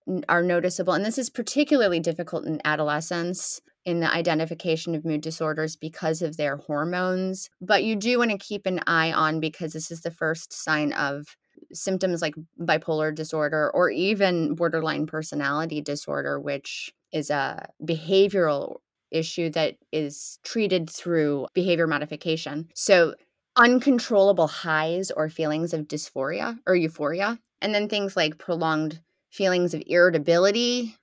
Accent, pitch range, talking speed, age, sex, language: American, 160-195 Hz, 140 wpm, 20-39, female, English